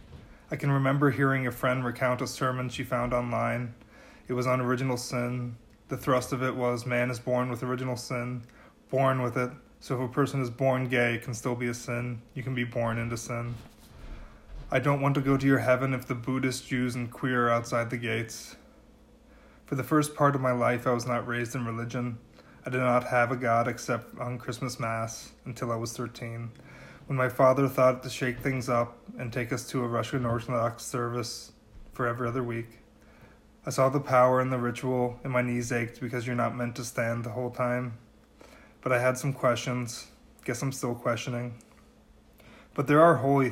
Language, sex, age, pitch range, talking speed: English, male, 20-39, 120-130 Hz, 205 wpm